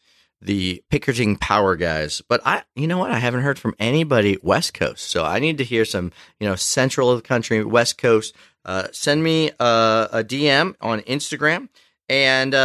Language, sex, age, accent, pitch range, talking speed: English, male, 30-49, American, 105-140 Hz, 185 wpm